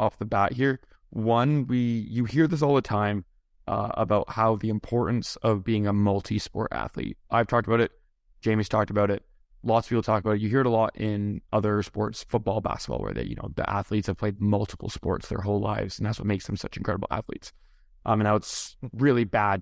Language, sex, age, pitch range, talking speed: English, male, 20-39, 105-115 Hz, 225 wpm